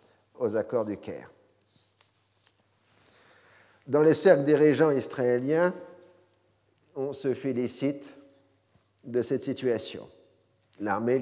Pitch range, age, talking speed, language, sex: 105-130 Hz, 50-69, 85 wpm, French, male